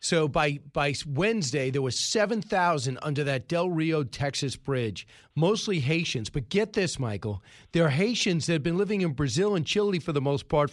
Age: 40-59